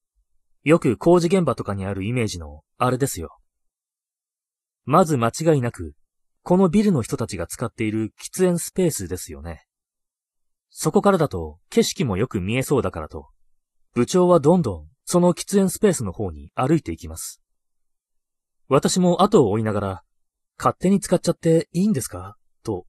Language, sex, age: Japanese, male, 30-49